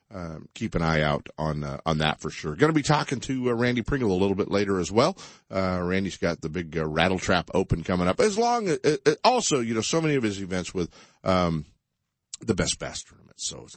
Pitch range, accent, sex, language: 85-140 Hz, American, male, English